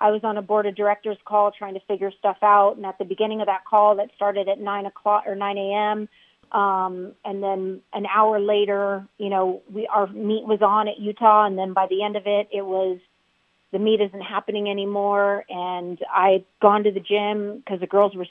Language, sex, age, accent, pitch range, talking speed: English, female, 30-49, American, 190-210 Hz, 220 wpm